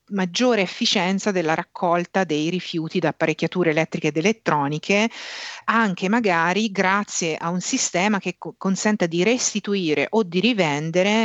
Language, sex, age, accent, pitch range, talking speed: Italian, female, 40-59, native, 160-205 Hz, 130 wpm